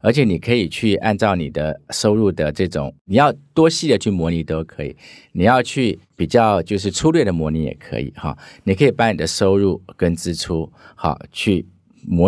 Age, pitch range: 50-69, 80-110 Hz